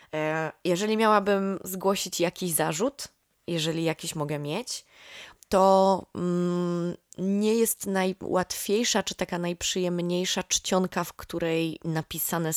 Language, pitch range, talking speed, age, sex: English, 155-190 Hz, 95 wpm, 20-39, female